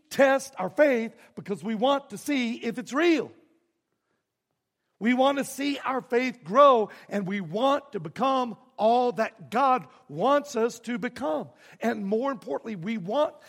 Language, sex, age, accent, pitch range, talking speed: English, male, 60-79, American, 160-230 Hz, 155 wpm